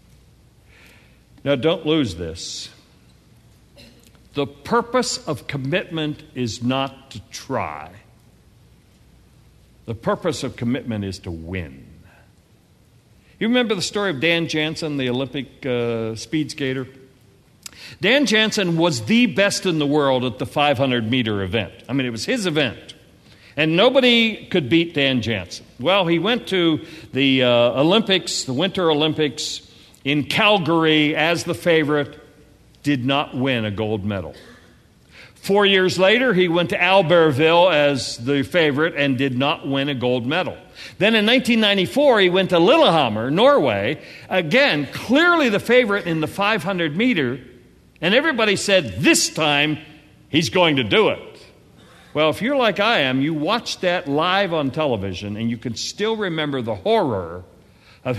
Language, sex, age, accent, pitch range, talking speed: English, male, 60-79, American, 130-190 Hz, 140 wpm